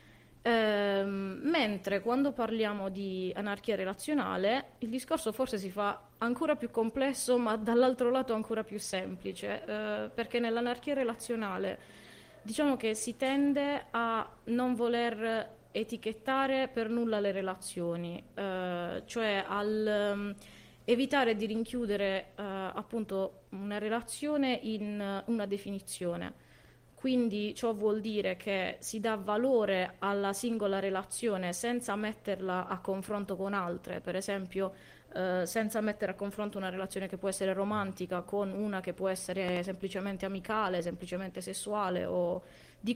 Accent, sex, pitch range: native, female, 195-230 Hz